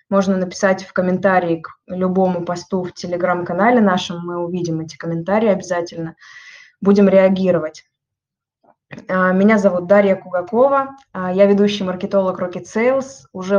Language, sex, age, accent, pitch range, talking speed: Russian, female, 20-39, native, 180-205 Hz, 120 wpm